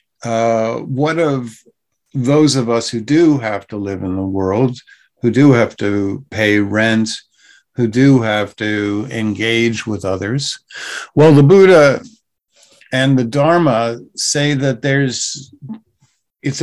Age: 50-69